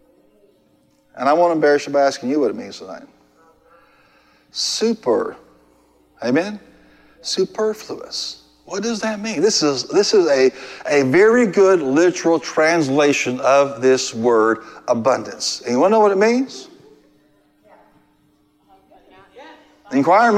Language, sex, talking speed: English, male, 110 wpm